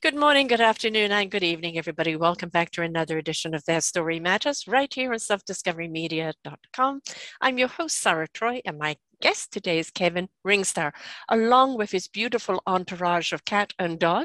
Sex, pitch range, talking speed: female, 180-245 Hz, 175 wpm